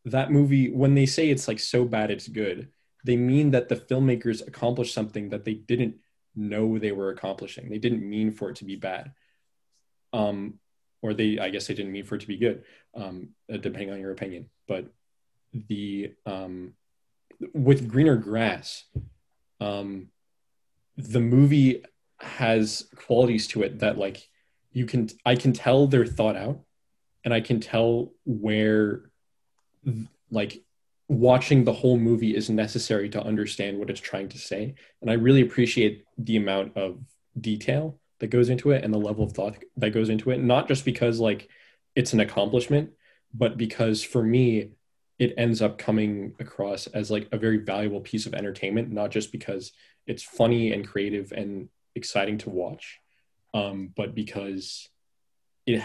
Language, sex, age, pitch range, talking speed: English, male, 20-39, 105-125 Hz, 165 wpm